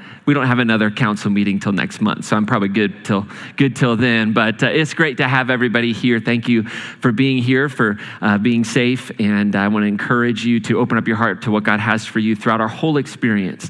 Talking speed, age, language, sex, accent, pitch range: 235 wpm, 30-49, English, male, American, 110-145 Hz